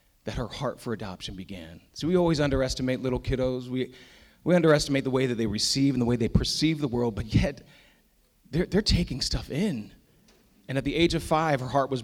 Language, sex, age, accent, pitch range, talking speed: English, male, 30-49, American, 105-125 Hz, 215 wpm